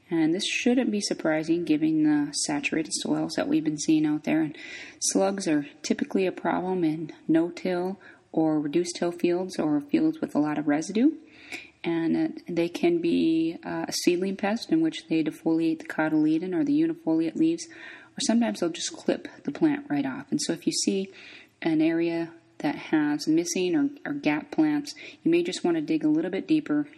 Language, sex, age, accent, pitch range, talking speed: English, female, 30-49, American, 195-320 Hz, 185 wpm